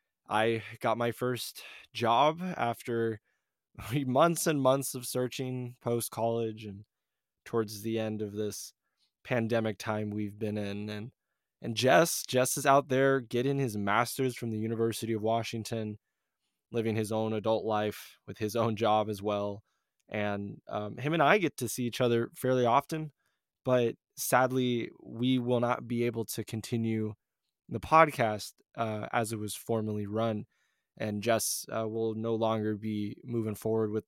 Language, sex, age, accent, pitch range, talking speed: English, male, 20-39, American, 105-120 Hz, 155 wpm